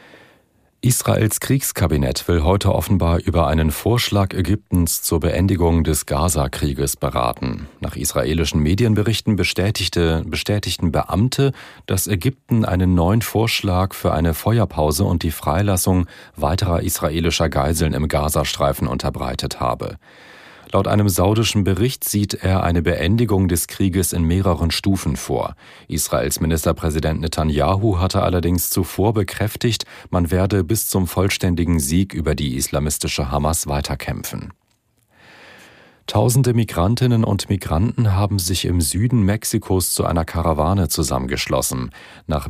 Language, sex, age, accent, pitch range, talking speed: German, male, 40-59, German, 80-100 Hz, 120 wpm